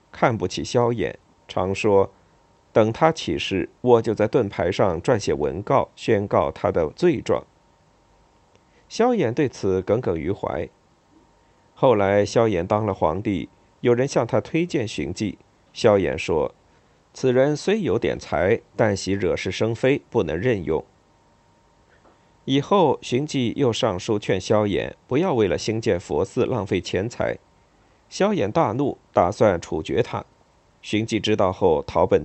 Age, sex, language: 50-69, male, Chinese